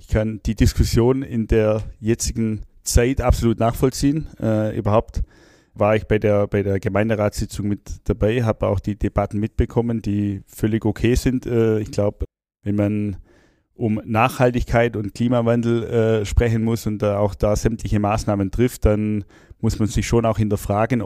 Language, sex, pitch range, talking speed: German, male, 105-120 Hz, 155 wpm